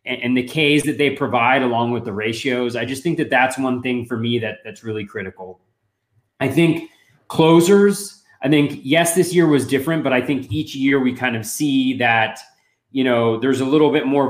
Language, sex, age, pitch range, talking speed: English, male, 20-39, 115-135 Hz, 210 wpm